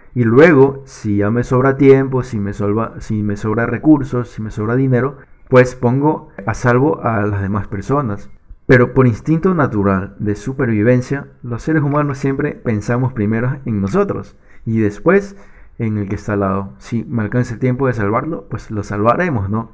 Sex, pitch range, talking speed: male, 105-135 Hz, 180 wpm